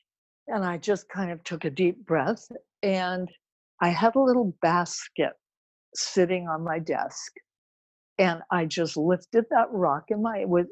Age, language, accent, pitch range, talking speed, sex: 60-79, English, American, 160-205 Hz, 150 wpm, female